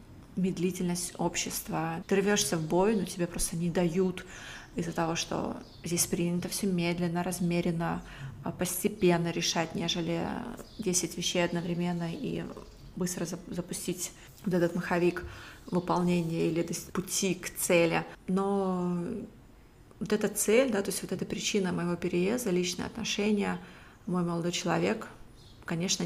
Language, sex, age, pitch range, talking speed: Russian, female, 20-39, 170-190 Hz, 125 wpm